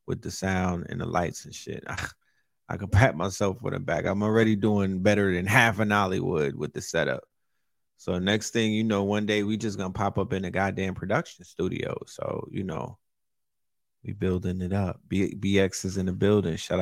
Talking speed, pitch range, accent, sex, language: 205 wpm, 95-110 Hz, American, male, English